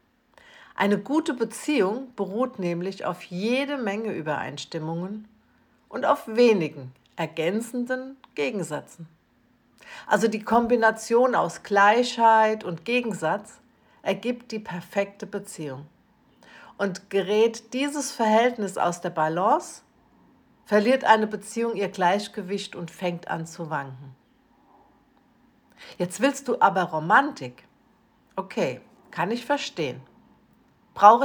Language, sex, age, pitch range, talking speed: German, female, 60-79, 180-250 Hz, 100 wpm